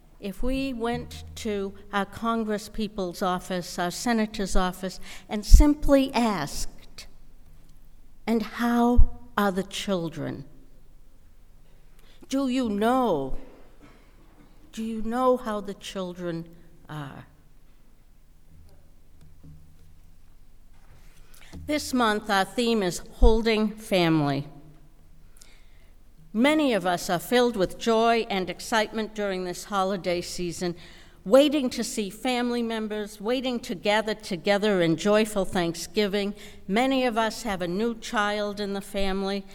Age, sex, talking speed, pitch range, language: 60-79, female, 105 wpm, 145-220 Hz, English